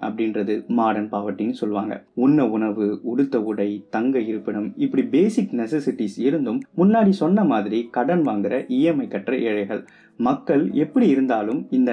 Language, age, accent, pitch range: Tamil, 20-39, native, 105-145 Hz